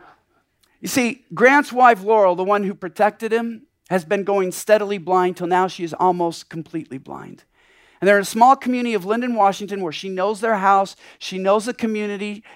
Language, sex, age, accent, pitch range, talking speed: English, male, 50-69, American, 195-260 Hz, 190 wpm